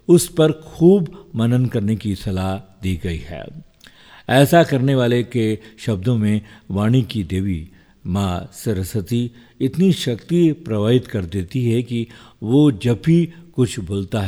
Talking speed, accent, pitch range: 140 wpm, native, 95-130 Hz